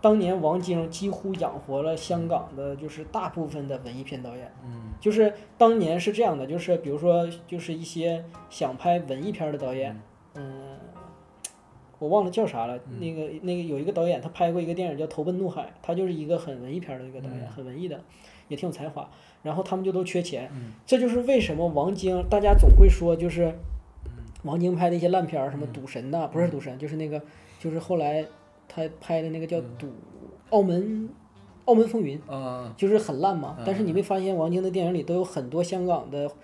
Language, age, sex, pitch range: Chinese, 20-39, male, 140-185 Hz